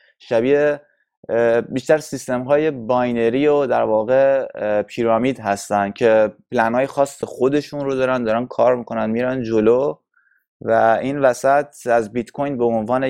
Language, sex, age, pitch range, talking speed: Persian, male, 20-39, 105-130 Hz, 130 wpm